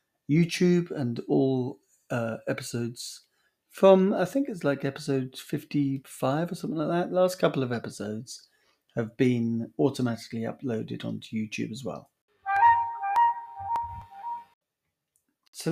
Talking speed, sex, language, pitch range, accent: 110 wpm, male, English, 115-155 Hz, British